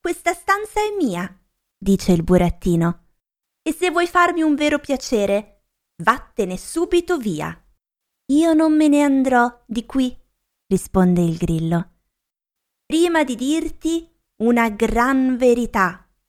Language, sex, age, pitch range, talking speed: Italian, female, 20-39, 205-295 Hz, 120 wpm